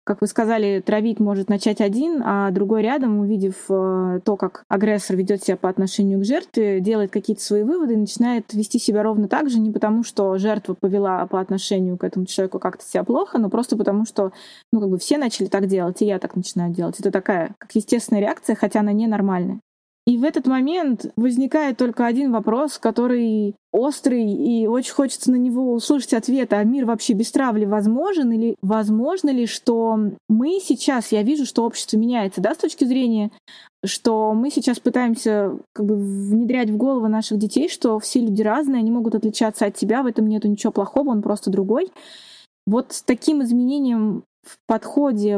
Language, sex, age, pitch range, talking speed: Russian, female, 20-39, 205-250 Hz, 180 wpm